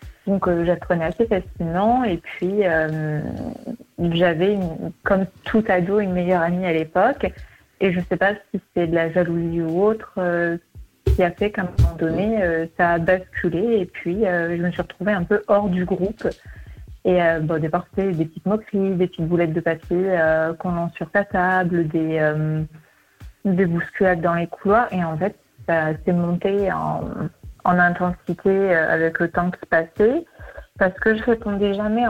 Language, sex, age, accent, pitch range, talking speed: French, female, 30-49, French, 170-200 Hz, 190 wpm